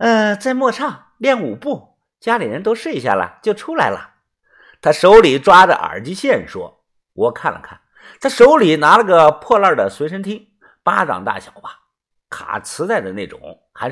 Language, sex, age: Chinese, male, 50-69